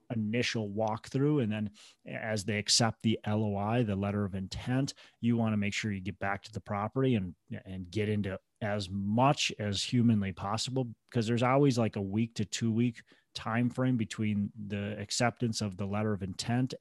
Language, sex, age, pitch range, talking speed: English, male, 30-49, 105-125 Hz, 185 wpm